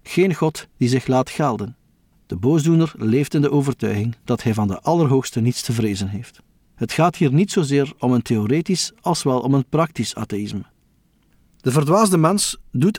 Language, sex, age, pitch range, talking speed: Dutch, male, 50-69, 120-165 Hz, 180 wpm